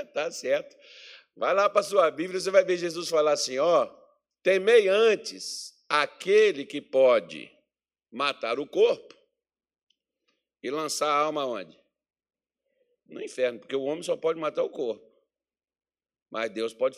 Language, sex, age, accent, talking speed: Portuguese, male, 60-79, Brazilian, 140 wpm